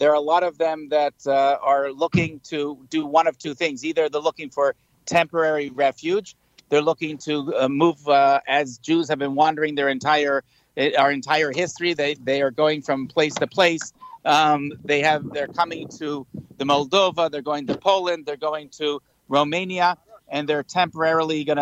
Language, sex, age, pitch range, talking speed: English, male, 50-69, 145-170 Hz, 185 wpm